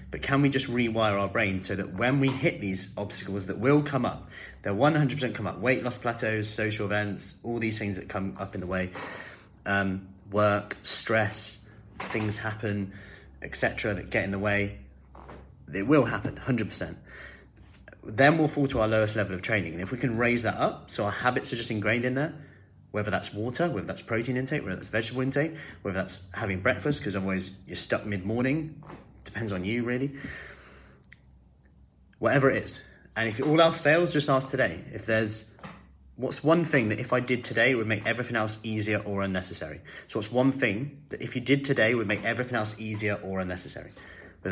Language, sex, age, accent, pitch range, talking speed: English, male, 30-49, British, 95-125 Hz, 195 wpm